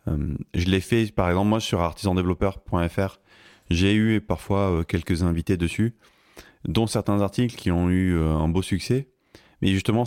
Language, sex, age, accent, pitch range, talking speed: French, male, 30-49, French, 85-105 Hz, 175 wpm